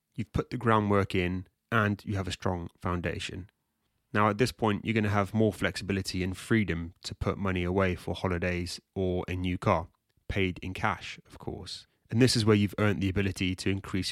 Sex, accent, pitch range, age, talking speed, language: male, British, 95-110 Hz, 30-49, 205 wpm, English